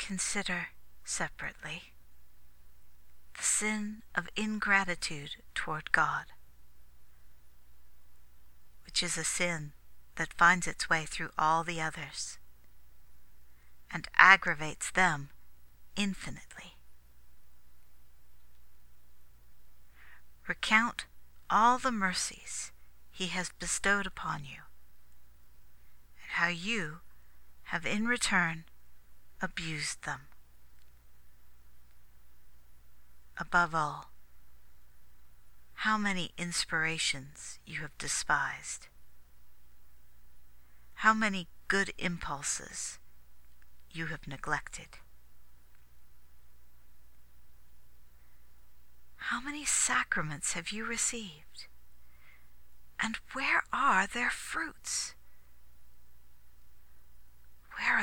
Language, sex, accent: English, female, American